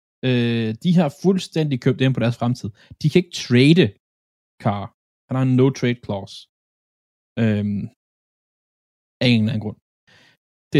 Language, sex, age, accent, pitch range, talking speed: Danish, male, 20-39, native, 105-130 Hz, 145 wpm